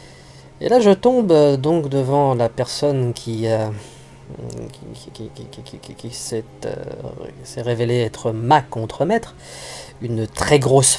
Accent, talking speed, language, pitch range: French, 155 wpm, French, 120-160 Hz